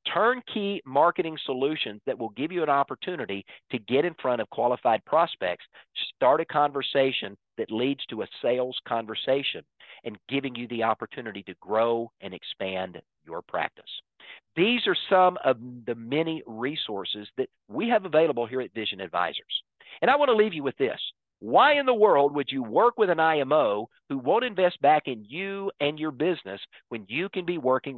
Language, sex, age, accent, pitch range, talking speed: English, male, 50-69, American, 115-155 Hz, 180 wpm